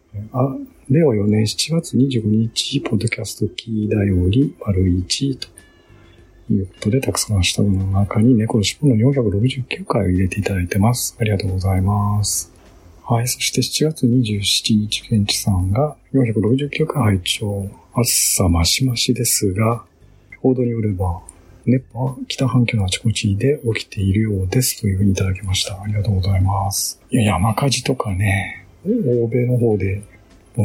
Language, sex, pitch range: Japanese, male, 95-120 Hz